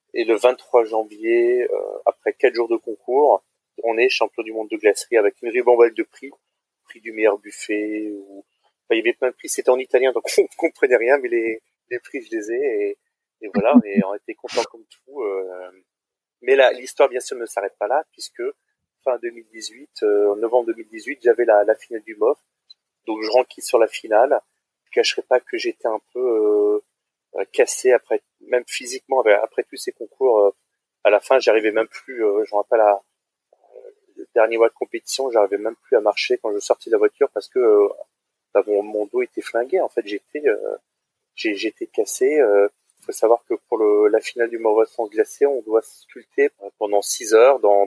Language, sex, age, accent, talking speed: French, male, 30-49, French, 210 wpm